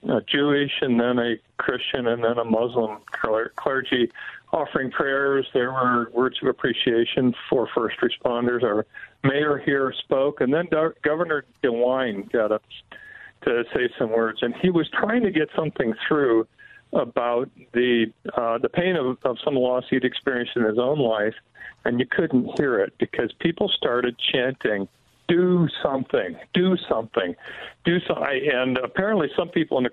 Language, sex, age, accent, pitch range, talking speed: English, male, 50-69, American, 120-155 Hz, 155 wpm